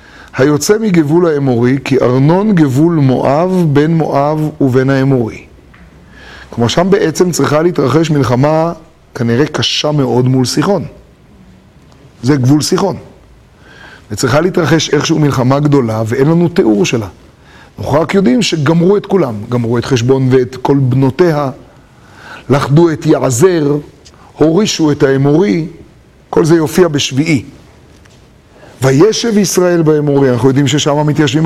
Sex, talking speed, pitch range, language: male, 120 wpm, 135-165 Hz, Hebrew